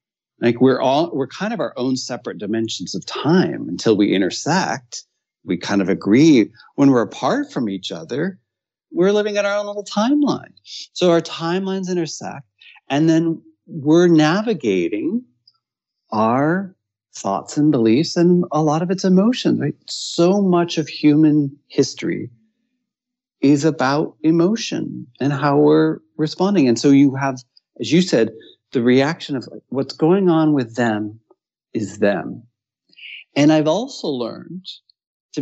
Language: English